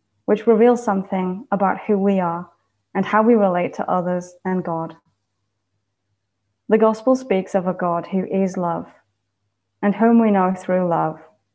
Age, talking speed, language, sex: 20-39, 155 wpm, English, female